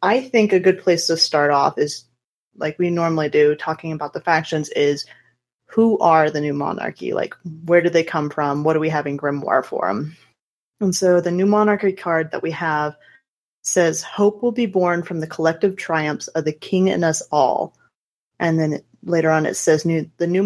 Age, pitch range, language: 30-49, 155-200 Hz, English